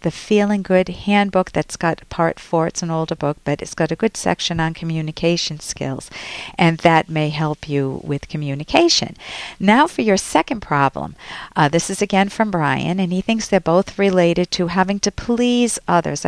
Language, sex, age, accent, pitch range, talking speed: English, female, 50-69, American, 160-210 Hz, 185 wpm